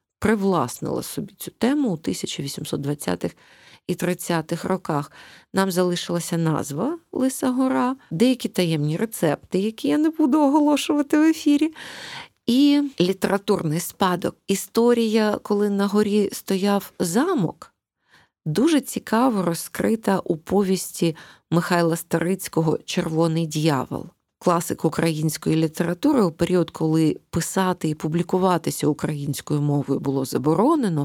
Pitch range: 155-210 Hz